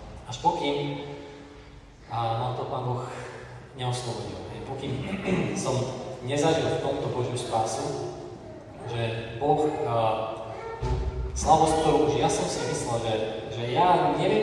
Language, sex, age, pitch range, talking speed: Slovak, male, 20-39, 110-135 Hz, 120 wpm